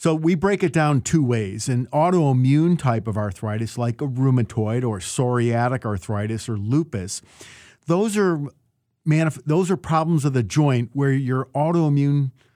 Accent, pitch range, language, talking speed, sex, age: American, 120-155 Hz, English, 155 wpm, male, 50-69